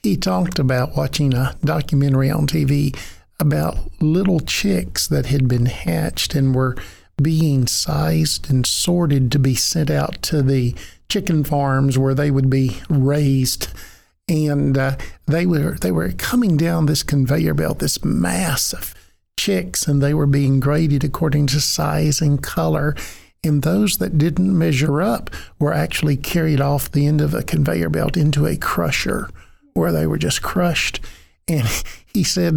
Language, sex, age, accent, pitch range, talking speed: English, male, 50-69, American, 140-175 Hz, 155 wpm